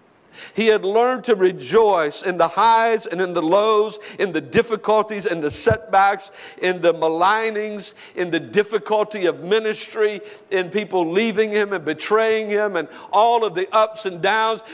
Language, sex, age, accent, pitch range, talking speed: English, male, 50-69, American, 190-225 Hz, 165 wpm